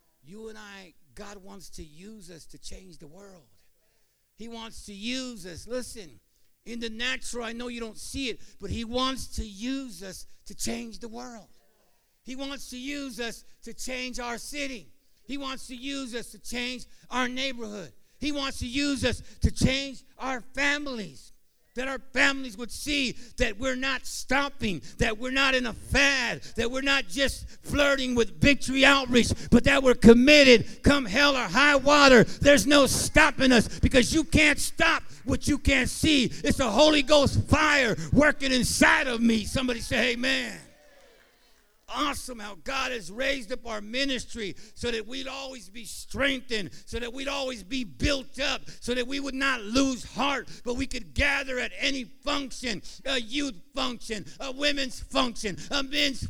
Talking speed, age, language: 175 wpm, 50-69, English